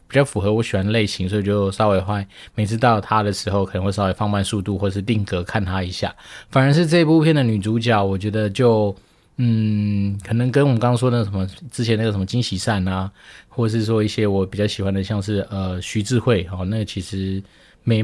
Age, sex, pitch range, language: 20-39, male, 100-120 Hz, Chinese